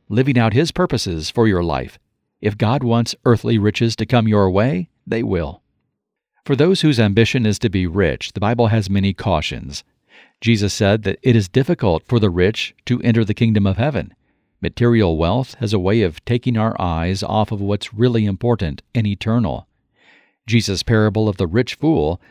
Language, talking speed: English, 185 wpm